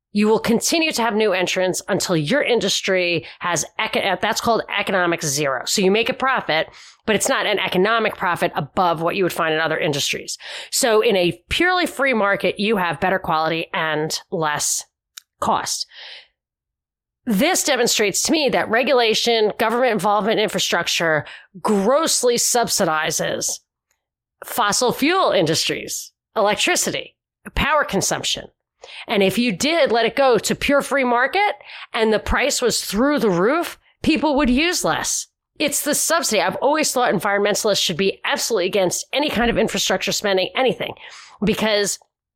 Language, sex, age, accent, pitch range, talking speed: English, female, 30-49, American, 185-250 Hz, 145 wpm